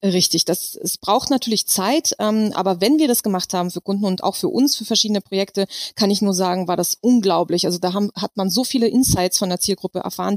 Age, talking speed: 30-49, 230 wpm